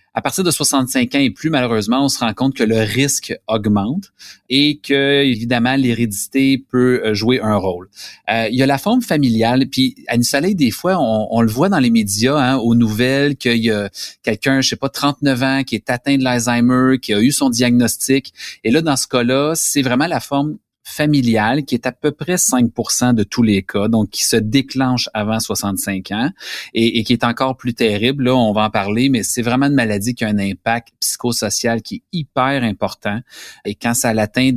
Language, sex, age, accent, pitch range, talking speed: French, male, 30-49, Canadian, 110-135 Hz, 215 wpm